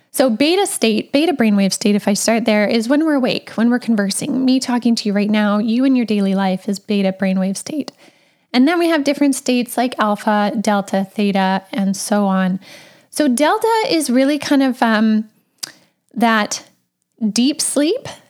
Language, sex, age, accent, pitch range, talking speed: English, female, 10-29, American, 215-270 Hz, 180 wpm